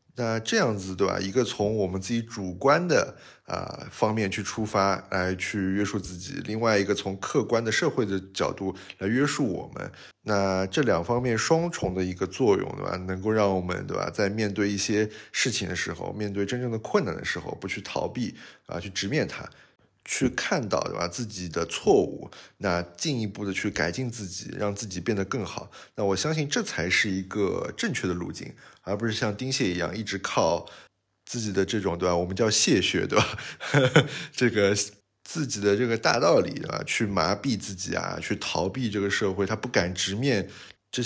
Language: Chinese